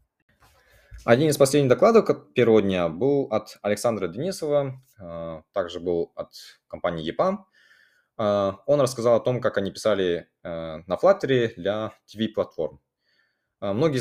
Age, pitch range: 20-39, 85-130 Hz